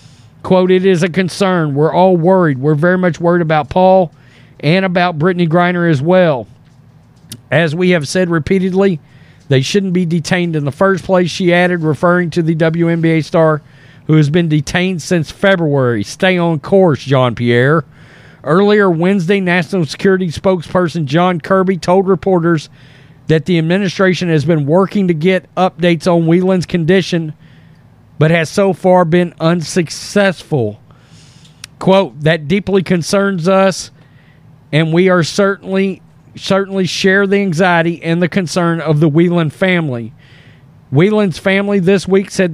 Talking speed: 145 wpm